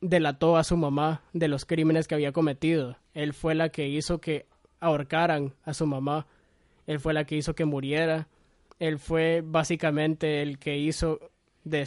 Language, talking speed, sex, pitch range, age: Spanish, 170 wpm, male, 150-170 Hz, 20-39